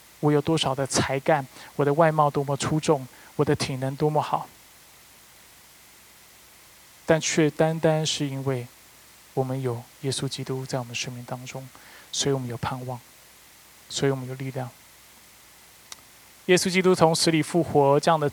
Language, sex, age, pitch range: Chinese, male, 20-39, 135-160 Hz